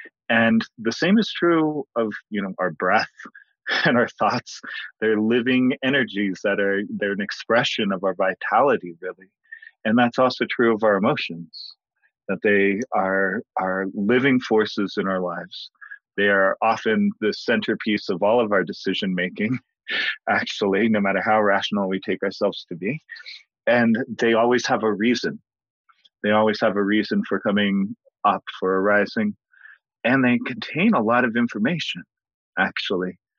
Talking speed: 155 wpm